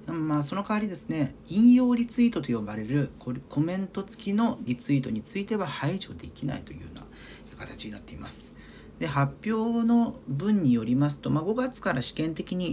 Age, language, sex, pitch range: 40-59, Japanese, male, 120-195 Hz